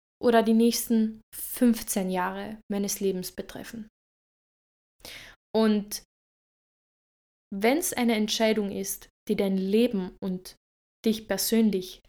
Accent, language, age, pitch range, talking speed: German, German, 10-29, 200-245 Hz, 100 wpm